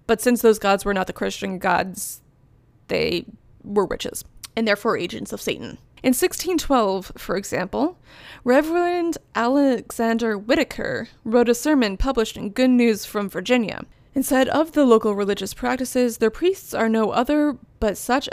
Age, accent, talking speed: 20-39, American, 150 wpm